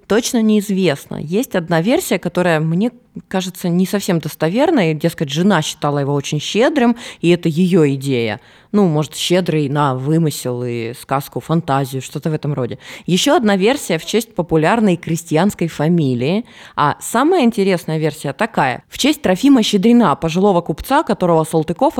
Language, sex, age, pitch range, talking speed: Russian, female, 20-39, 150-195 Hz, 150 wpm